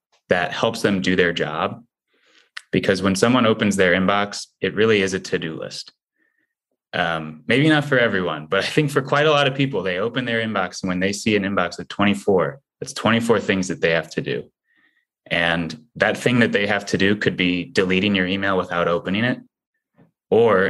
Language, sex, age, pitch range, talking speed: English, male, 20-39, 85-105 Hz, 200 wpm